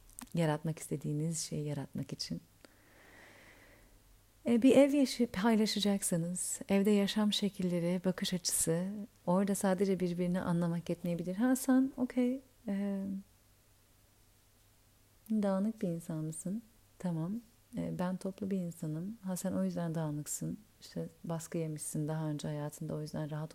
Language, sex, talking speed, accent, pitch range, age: Turkish, female, 120 wpm, native, 155-200 Hz, 40-59